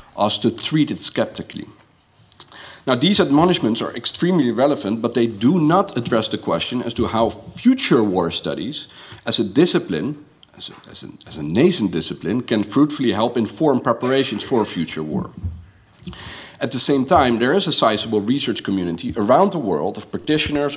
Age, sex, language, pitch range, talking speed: 50-69, male, Dutch, 105-140 Hz, 160 wpm